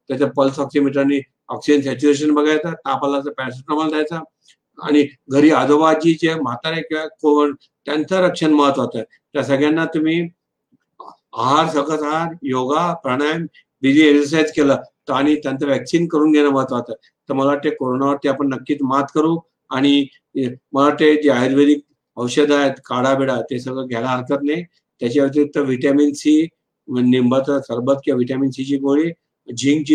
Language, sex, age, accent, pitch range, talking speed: Marathi, male, 50-69, native, 135-155 Hz, 130 wpm